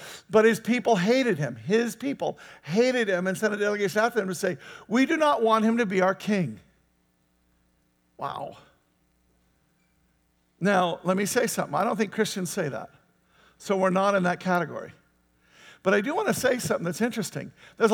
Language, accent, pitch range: English, American, 185-245 Hz